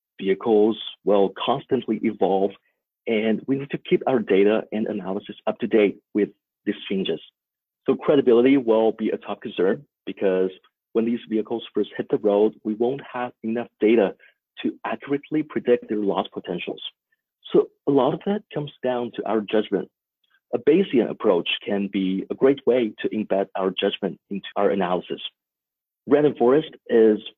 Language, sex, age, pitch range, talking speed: English, male, 40-59, 105-125 Hz, 160 wpm